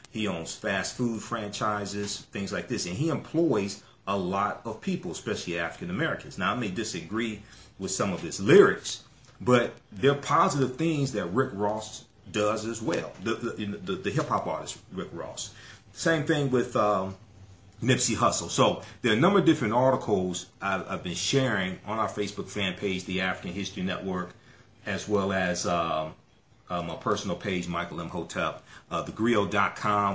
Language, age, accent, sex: English, 40-59, American, male